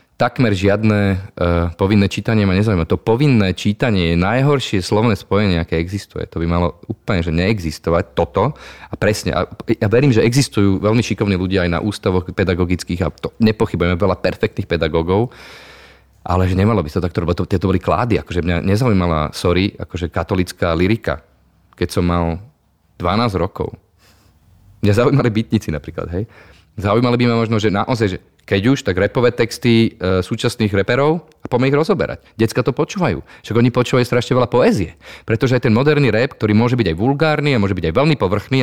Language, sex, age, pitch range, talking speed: Slovak, male, 30-49, 90-120 Hz, 175 wpm